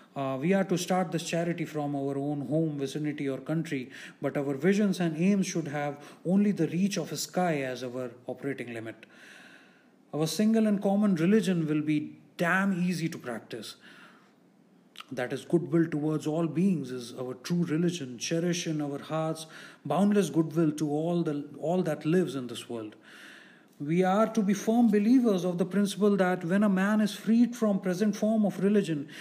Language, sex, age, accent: English, male, 30-49, Indian